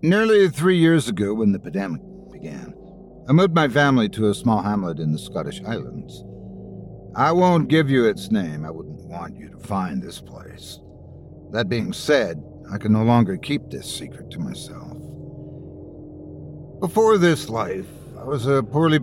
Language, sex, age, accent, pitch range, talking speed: English, male, 60-79, American, 100-145 Hz, 165 wpm